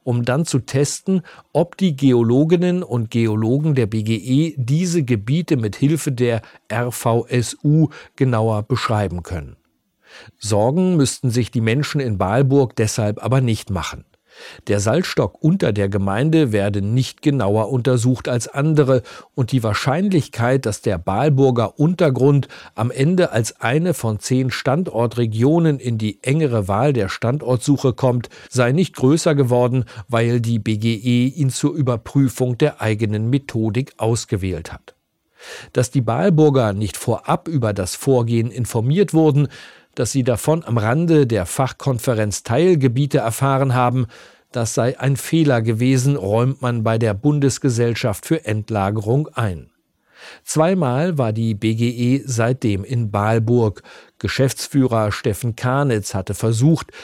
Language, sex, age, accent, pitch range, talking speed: German, male, 40-59, German, 115-140 Hz, 130 wpm